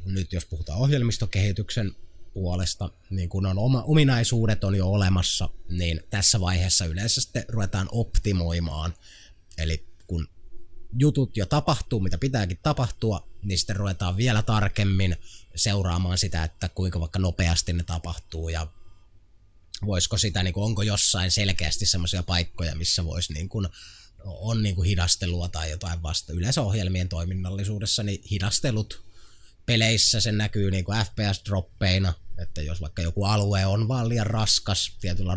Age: 20-39